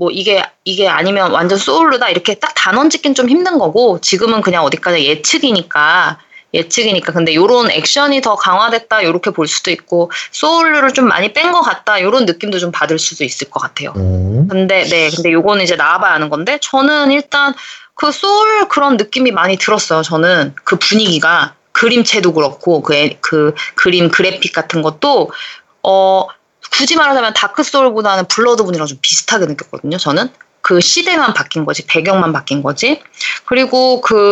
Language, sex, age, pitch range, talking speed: English, female, 20-39, 170-275 Hz, 150 wpm